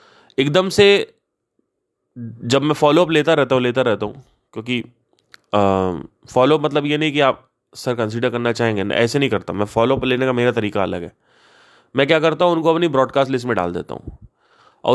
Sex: male